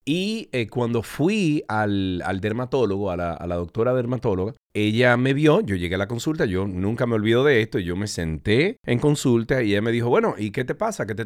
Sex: male